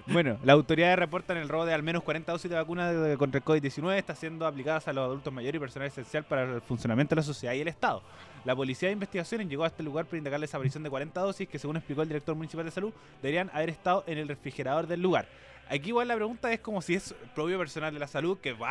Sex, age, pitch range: male, 20-39, 145-185 Hz